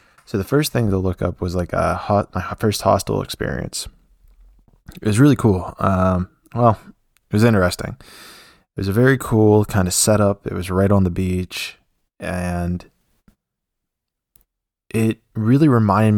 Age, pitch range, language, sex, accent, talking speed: 20-39, 90-110 Hz, English, male, American, 155 wpm